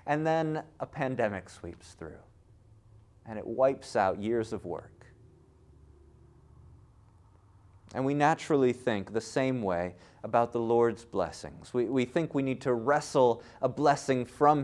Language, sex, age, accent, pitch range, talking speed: English, male, 30-49, American, 125-190 Hz, 140 wpm